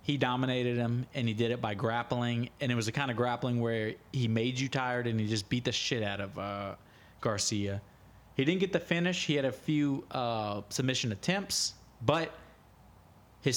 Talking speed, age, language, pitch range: 200 wpm, 30-49, English, 115-150 Hz